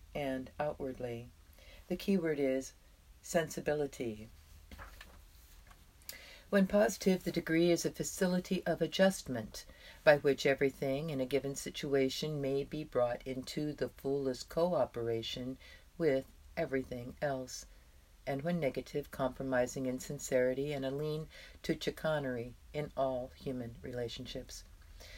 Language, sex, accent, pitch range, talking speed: English, female, American, 115-155 Hz, 110 wpm